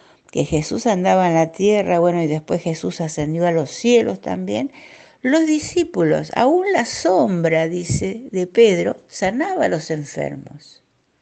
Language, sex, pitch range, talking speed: Spanish, female, 165-245 Hz, 145 wpm